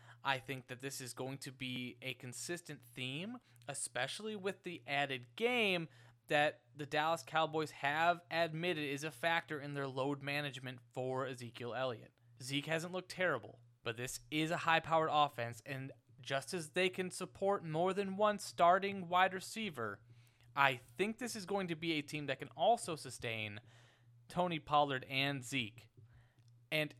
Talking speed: 160 wpm